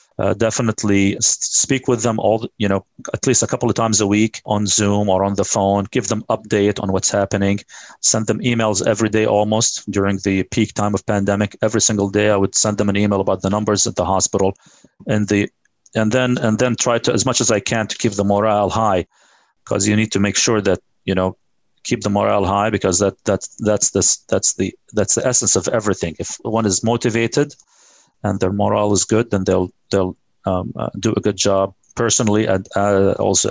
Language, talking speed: English, 215 wpm